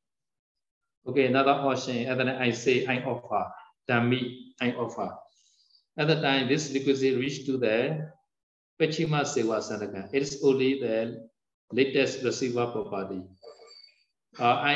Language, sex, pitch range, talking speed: Vietnamese, male, 115-145 Hz, 125 wpm